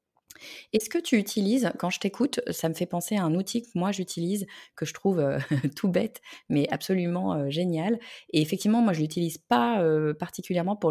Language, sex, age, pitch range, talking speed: French, female, 20-39, 150-190 Hz, 210 wpm